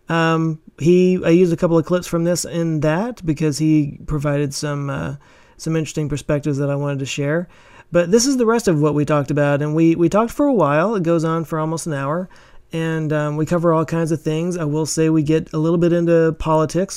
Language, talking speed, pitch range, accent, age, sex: English, 235 wpm, 145-165 Hz, American, 30-49, male